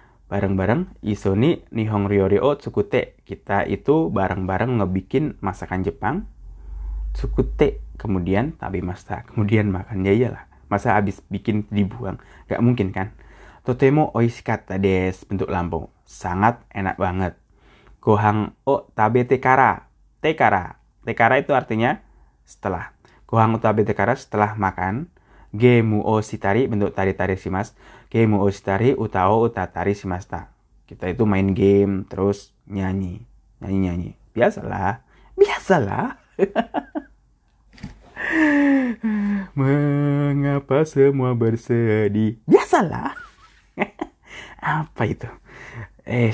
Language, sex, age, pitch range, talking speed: Indonesian, male, 20-39, 95-130 Hz, 100 wpm